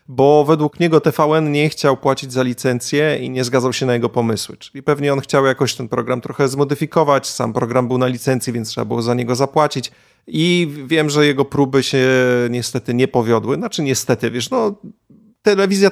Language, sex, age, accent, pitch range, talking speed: Polish, male, 30-49, native, 125-150 Hz, 190 wpm